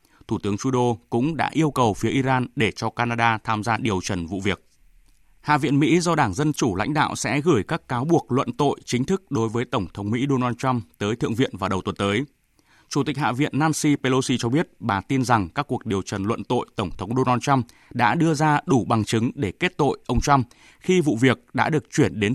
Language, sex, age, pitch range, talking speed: Vietnamese, male, 20-39, 115-145 Hz, 240 wpm